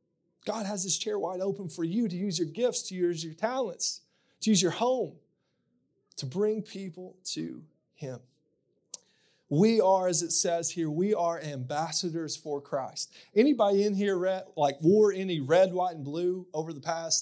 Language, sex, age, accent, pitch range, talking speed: English, male, 30-49, American, 165-210 Hz, 170 wpm